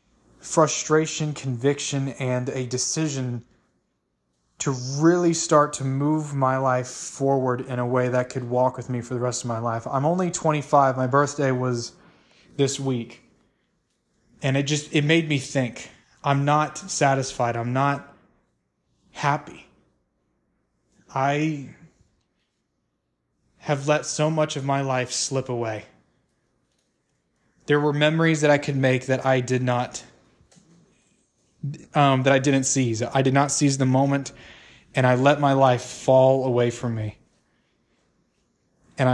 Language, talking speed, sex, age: English, 140 wpm, male, 20-39